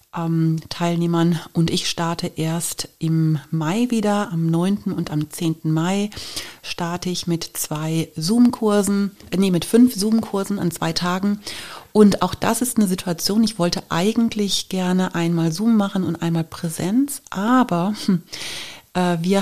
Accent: German